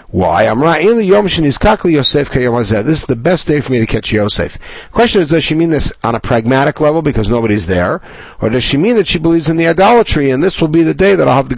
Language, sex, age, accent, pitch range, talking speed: English, male, 60-79, American, 110-165 Hz, 270 wpm